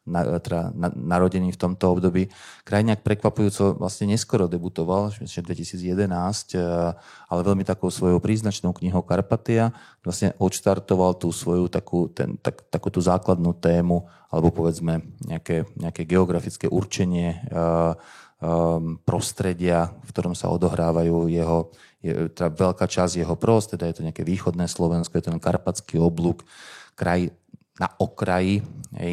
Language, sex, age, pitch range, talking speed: Slovak, male, 20-39, 85-100 Hz, 130 wpm